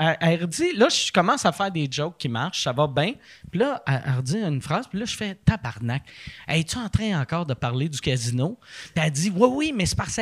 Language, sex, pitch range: French, male, 155-225 Hz